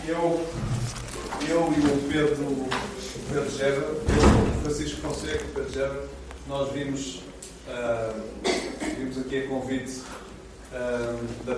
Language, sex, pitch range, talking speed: Portuguese, male, 120-135 Hz, 95 wpm